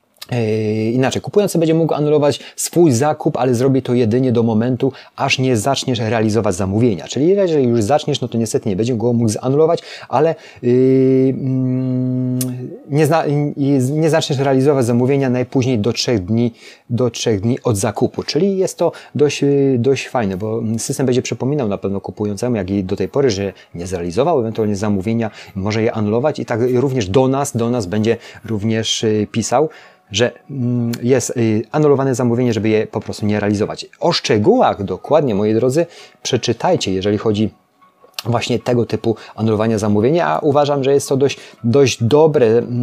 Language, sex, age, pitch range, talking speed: Polish, male, 30-49, 110-130 Hz, 155 wpm